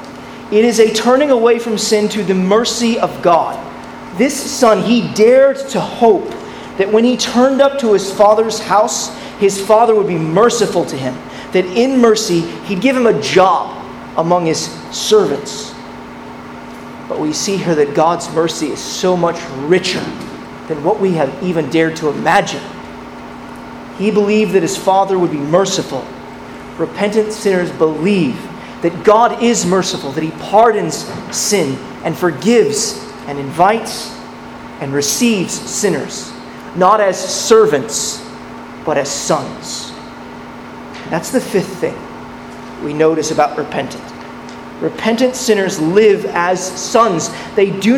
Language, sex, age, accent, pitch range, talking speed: English, male, 30-49, American, 180-230 Hz, 140 wpm